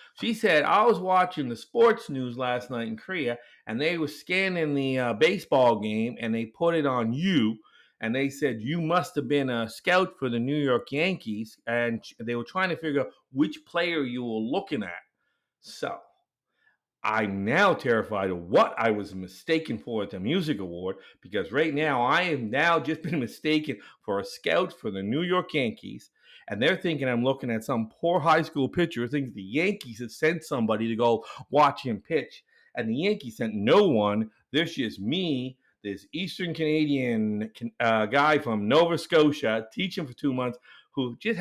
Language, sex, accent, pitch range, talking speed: English, male, American, 115-170 Hz, 185 wpm